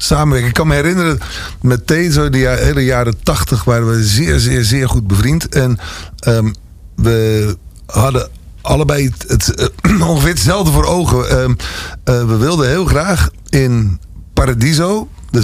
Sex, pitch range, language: male, 100-130 Hz, Dutch